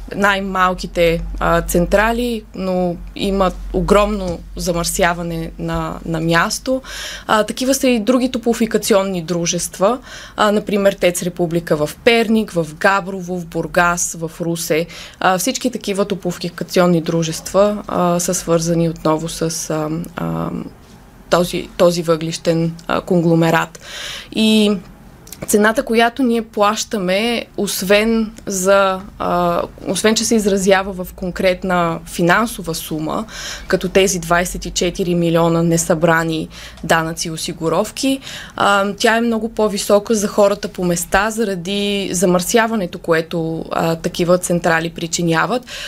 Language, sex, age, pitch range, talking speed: Bulgarian, female, 20-39, 175-205 Hz, 110 wpm